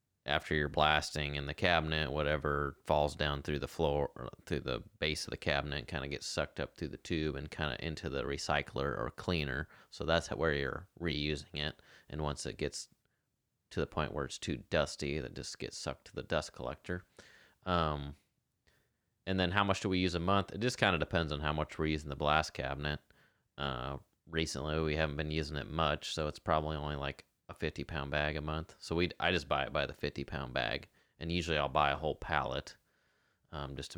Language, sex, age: English, male, 30-49